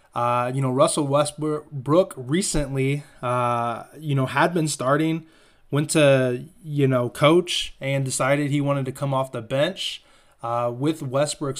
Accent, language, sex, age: American, English, male, 20-39